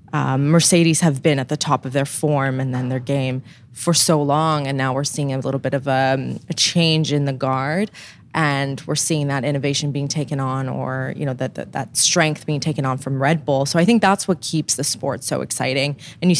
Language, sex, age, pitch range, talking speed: English, female, 20-39, 135-165 Hz, 240 wpm